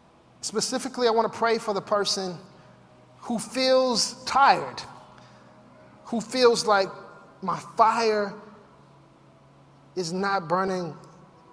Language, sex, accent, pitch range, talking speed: English, male, American, 165-200 Hz, 100 wpm